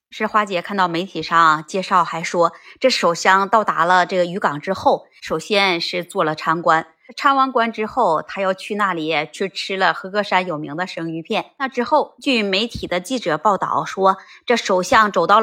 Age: 20-39